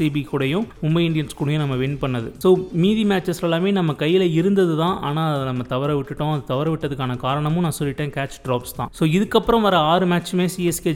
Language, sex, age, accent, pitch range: Tamil, male, 30-49, native, 140-175 Hz